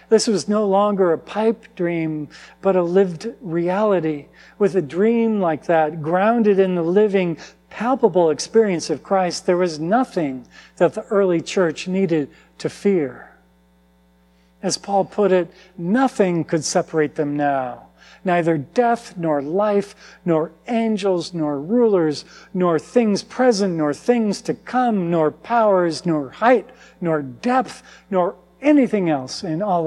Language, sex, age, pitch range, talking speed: English, male, 50-69, 150-205 Hz, 140 wpm